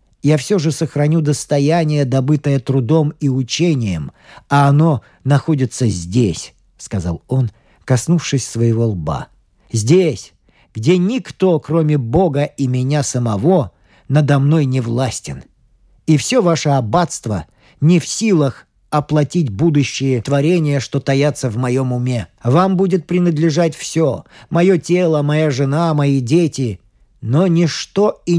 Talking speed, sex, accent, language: 125 wpm, male, native, Russian